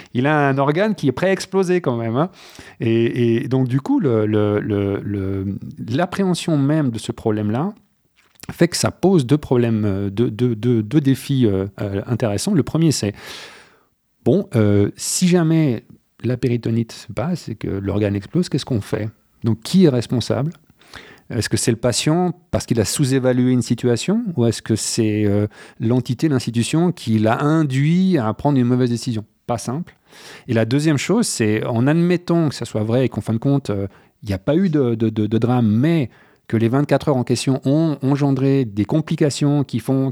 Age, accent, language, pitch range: 40-59, French, French, 110-150 Hz